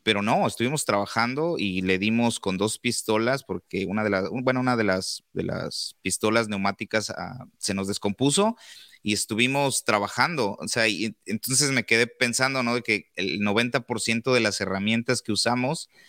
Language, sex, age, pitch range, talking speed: Spanish, male, 30-49, 100-120 Hz, 170 wpm